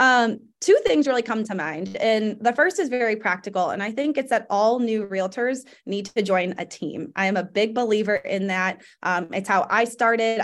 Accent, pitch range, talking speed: American, 195-235 Hz, 220 wpm